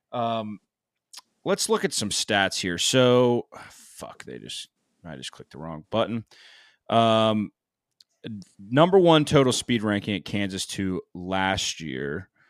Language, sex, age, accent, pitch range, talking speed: English, male, 30-49, American, 95-115 Hz, 140 wpm